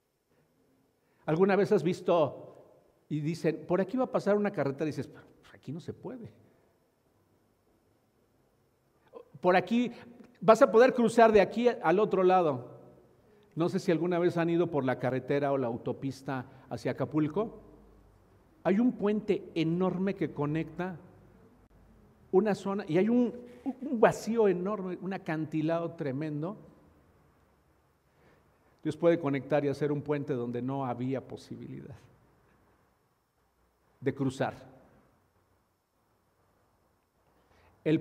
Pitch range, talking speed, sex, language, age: 125-200 Hz, 120 wpm, male, Spanish, 50-69